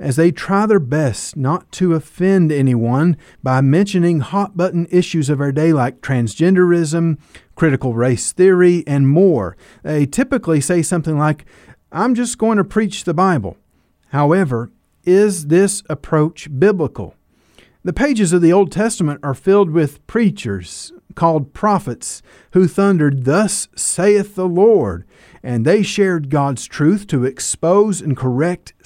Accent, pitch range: American, 135-195 Hz